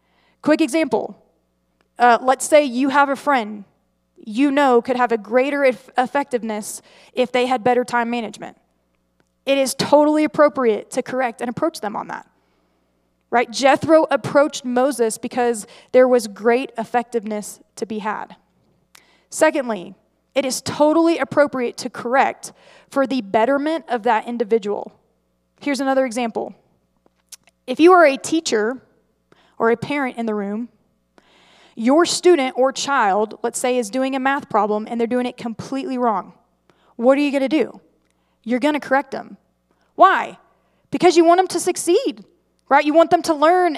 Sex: female